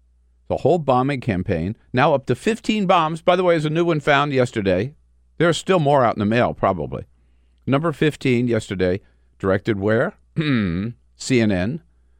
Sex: male